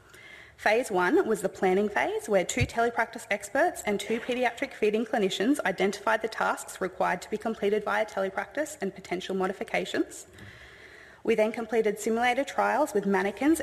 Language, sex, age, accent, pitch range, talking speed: English, female, 20-39, Australian, 190-225 Hz, 150 wpm